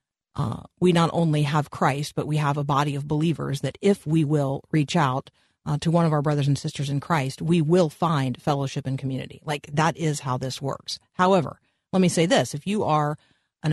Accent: American